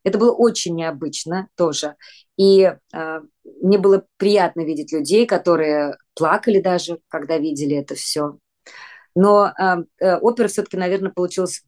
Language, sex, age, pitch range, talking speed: English, female, 20-39, 155-195 Hz, 130 wpm